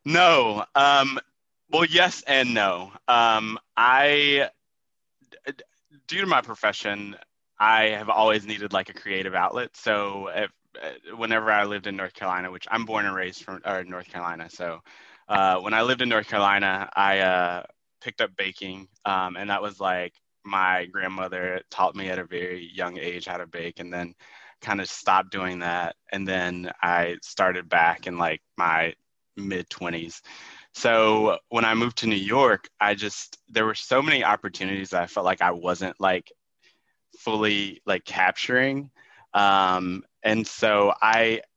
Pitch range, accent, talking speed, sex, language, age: 95-110 Hz, American, 155 wpm, male, English, 20-39